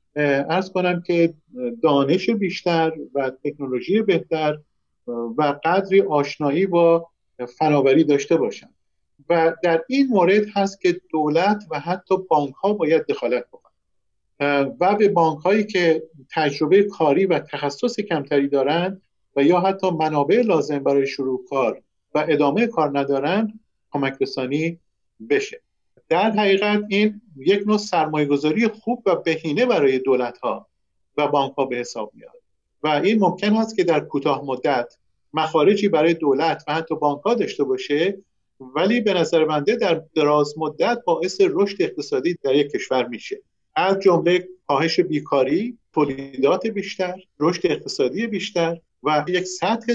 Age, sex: 50-69, male